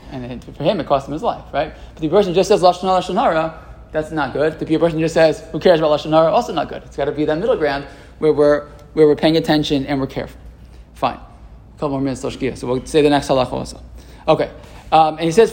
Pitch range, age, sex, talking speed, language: 150-200 Hz, 20-39, male, 250 wpm, English